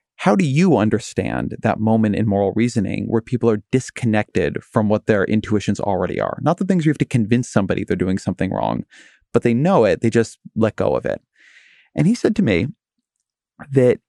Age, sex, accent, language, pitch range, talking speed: 30-49, male, American, English, 105-120 Hz, 200 wpm